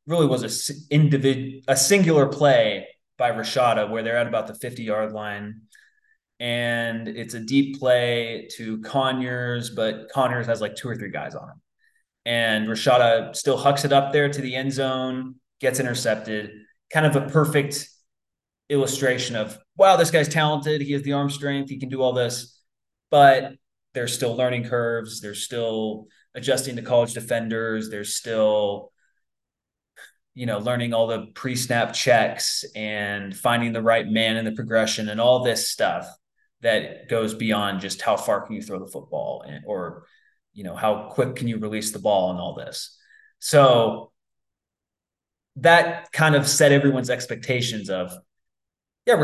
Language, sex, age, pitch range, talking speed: English, male, 20-39, 110-140 Hz, 160 wpm